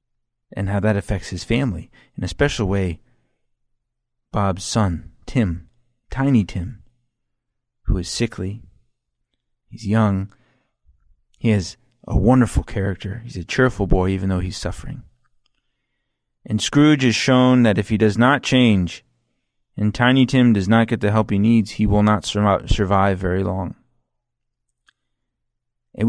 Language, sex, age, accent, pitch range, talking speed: English, male, 30-49, American, 105-125 Hz, 140 wpm